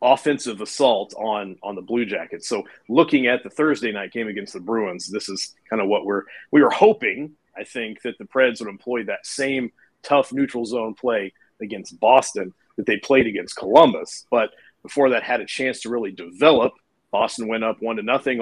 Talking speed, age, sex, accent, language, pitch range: 200 wpm, 40-59, male, American, English, 105-135 Hz